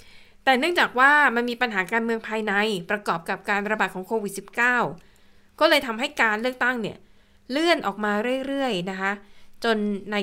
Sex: female